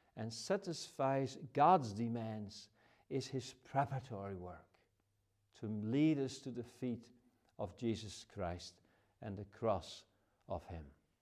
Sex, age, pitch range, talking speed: male, 50-69, 105-145 Hz, 120 wpm